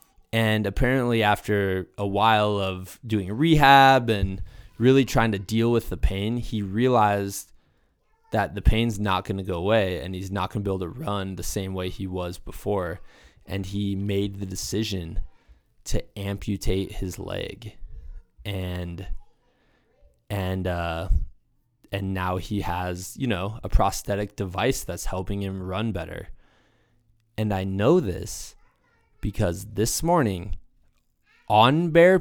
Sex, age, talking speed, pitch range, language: male, 20-39, 140 wpm, 95-115 Hz, English